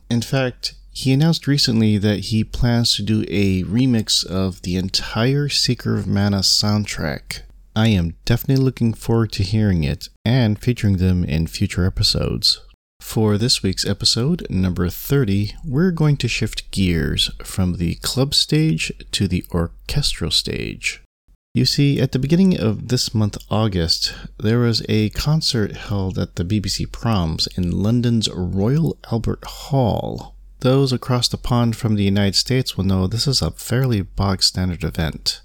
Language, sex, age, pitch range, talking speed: English, male, 30-49, 95-125 Hz, 155 wpm